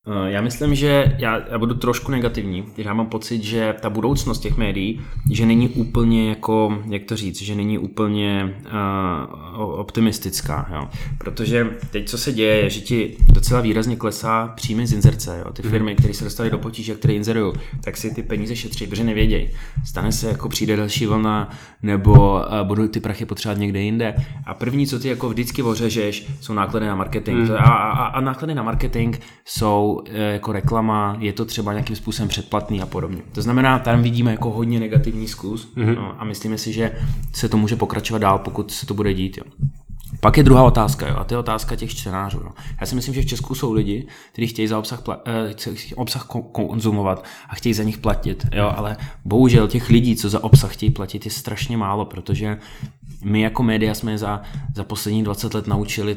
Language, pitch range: Czech, 105-120 Hz